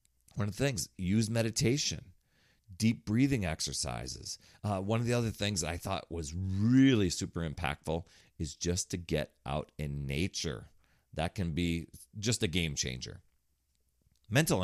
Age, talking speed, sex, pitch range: 40-59, 150 wpm, male, 85-115 Hz